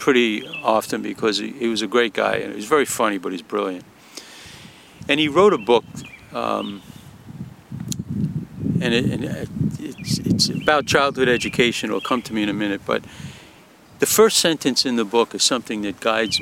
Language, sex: English, male